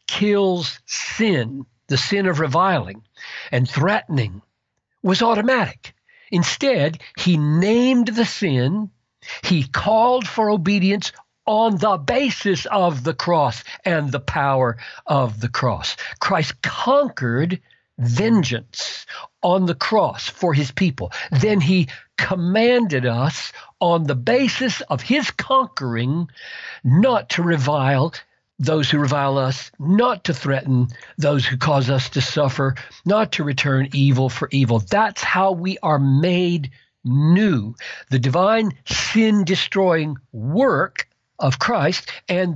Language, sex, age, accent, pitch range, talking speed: English, male, 60-79, American, 135-195 Hz, 120 wpm